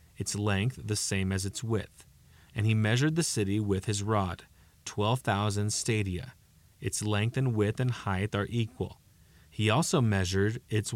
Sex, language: male, English